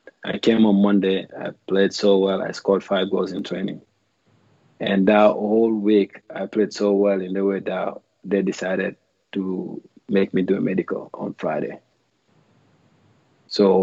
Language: English